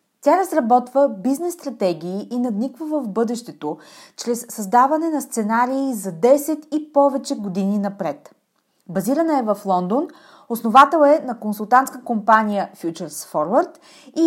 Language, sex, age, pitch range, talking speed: Bulgarian, female, 30-49, 195-285 Hz, 120 wpm